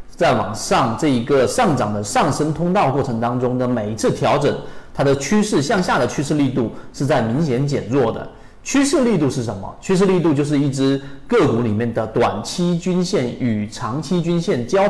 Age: 40-59